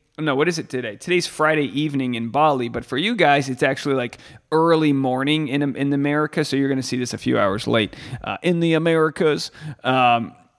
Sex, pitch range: male, 140-190 Hz